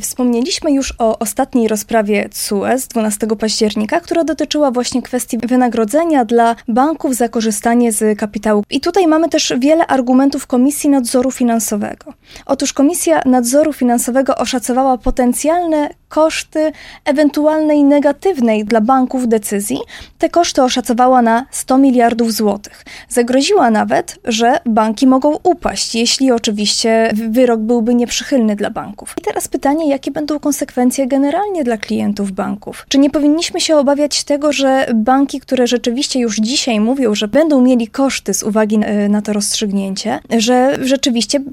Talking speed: 135 wpm